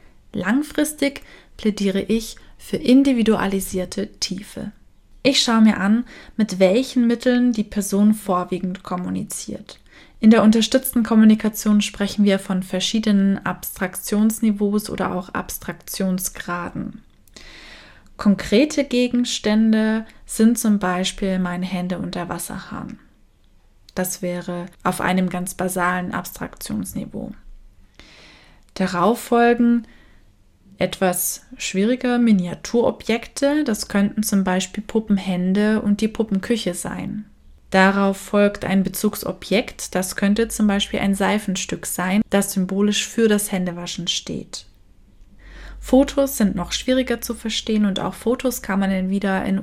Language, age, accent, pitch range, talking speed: German, 20-39, German, 185-220 Hz, 110 wpm